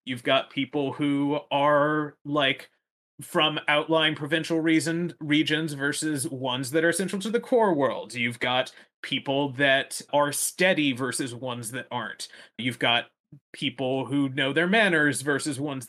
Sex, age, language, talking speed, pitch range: male, 30-49, English, 145 wpm, 140-180 Hz